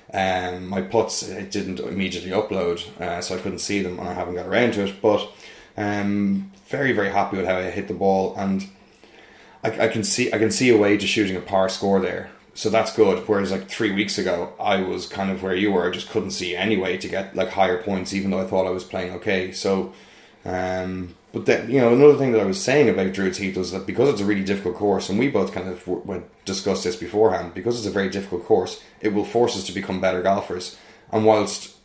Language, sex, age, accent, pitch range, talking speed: English, male, 20-39, Irish, 95-105 Hz, 245 wpm